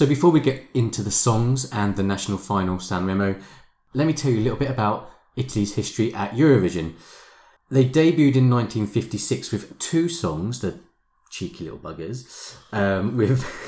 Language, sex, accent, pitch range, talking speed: English, male, British, 95-125 Hz, 165 wpm